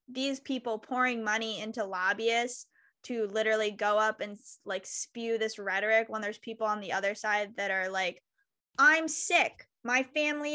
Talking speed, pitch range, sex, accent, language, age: 165 wpm, 225-275 Hz, female, American, English, 10-29